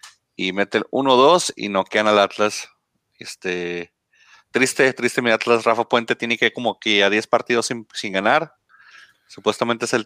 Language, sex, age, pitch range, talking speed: Spanish, male, 30-49, 95-125 Hz, 175 wpm